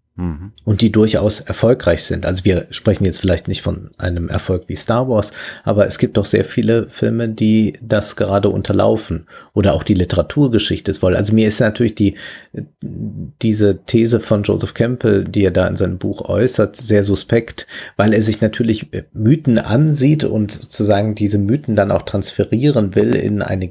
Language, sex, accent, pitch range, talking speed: German, male, German, 100-120 Hz, 170 wpm